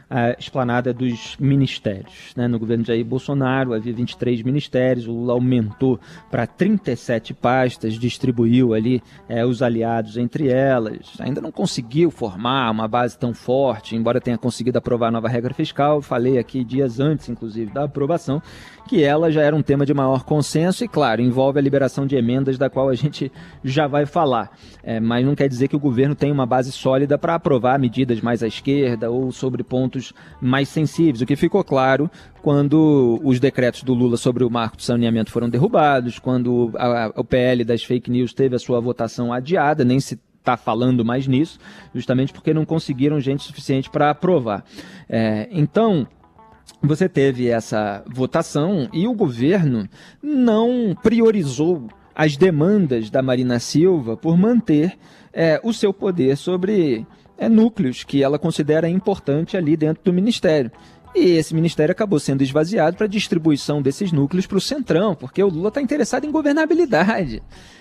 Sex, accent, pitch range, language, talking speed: male, Brazilian, 120-160 Hz, Portuguese, 165 wpm